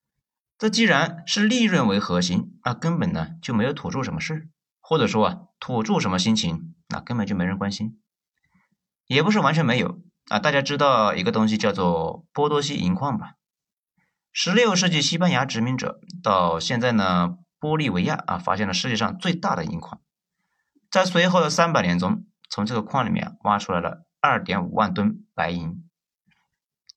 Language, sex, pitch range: Chinese, male, 135-190 Hz